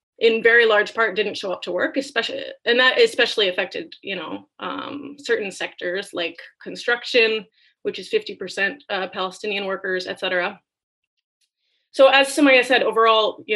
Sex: female